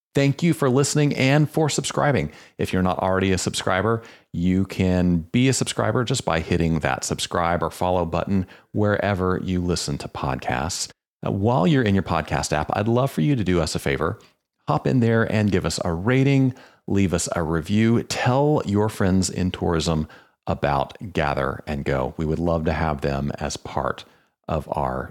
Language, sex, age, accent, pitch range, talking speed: English, male, 40-59, American, 80-105 Hz, 185 wpm